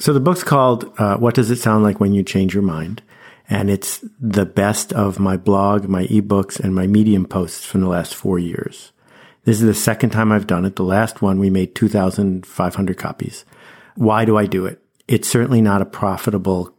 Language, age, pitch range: English, 50-69, 95-110 Hz